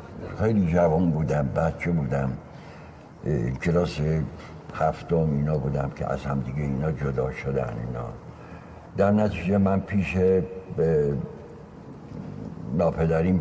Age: 60-79